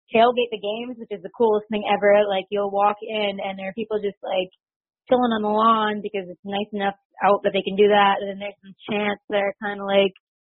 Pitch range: 195-230 Hz